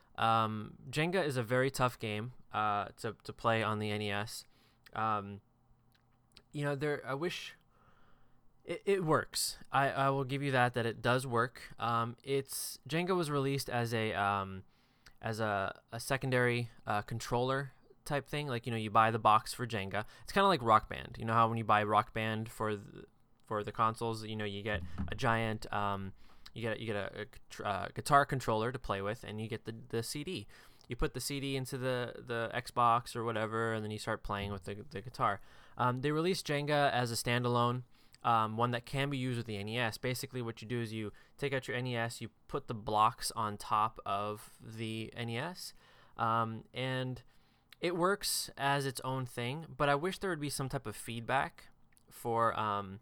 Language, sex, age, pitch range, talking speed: English, male, 20-39, 110-135 Hz, 200 wpm